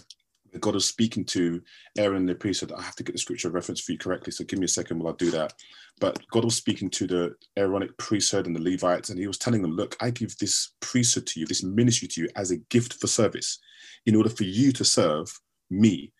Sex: male